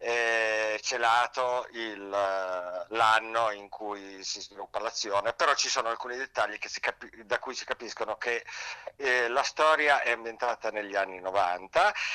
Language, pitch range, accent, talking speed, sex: Italian, 105-140 Hz, native, 135 wpm, male